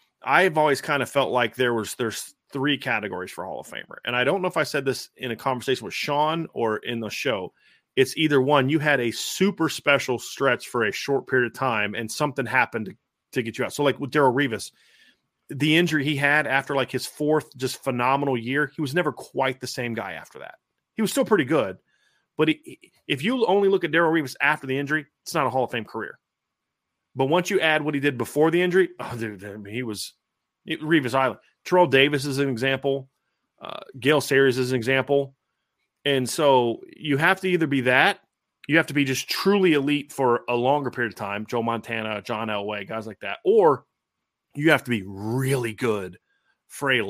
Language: English